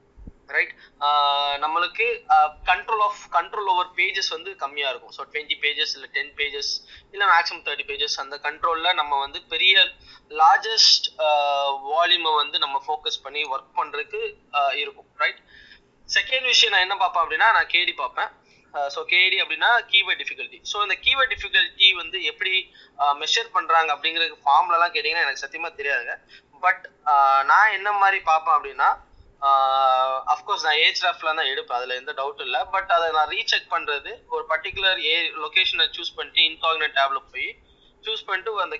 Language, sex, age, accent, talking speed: English, male, 20-39, Indian, 135 wpm